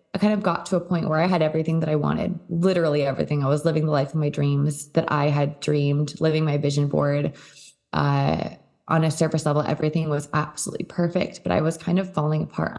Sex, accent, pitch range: female, American, 150-180 Hz